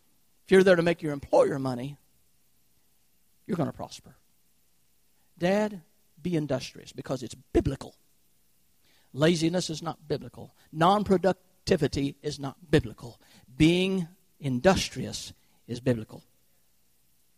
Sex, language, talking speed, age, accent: male, English, 100 wpm, 50-69, American